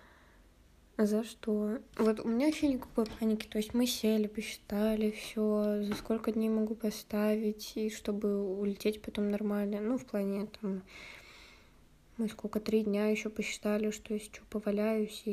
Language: Russian